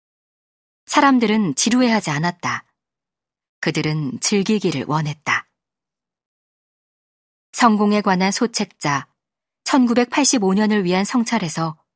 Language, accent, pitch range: Korean, native, 165-225 Hz